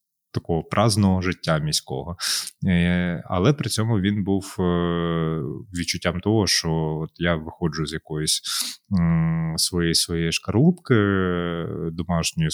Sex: male